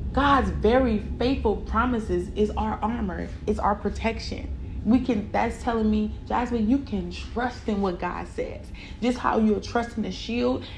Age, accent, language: 30-49, American, English